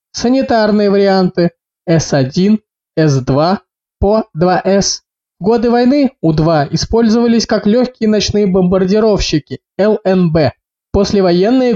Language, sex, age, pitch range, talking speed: Russian, male, 20-39, 170-210 Hz, 75 wpm